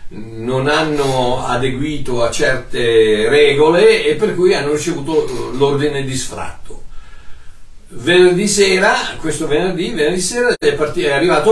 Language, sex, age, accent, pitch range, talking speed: Italian, male, 60-79, native, 125-200 Hz, 125 wpm